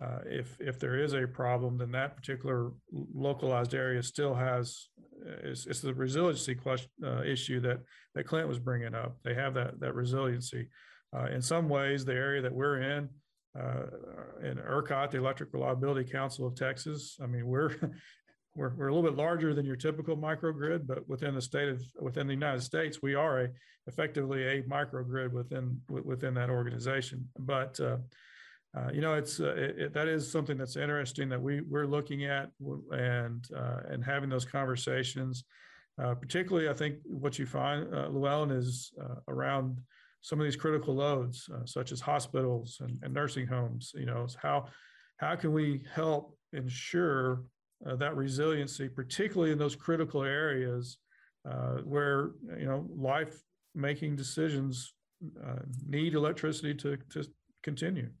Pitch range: 125-145 Hz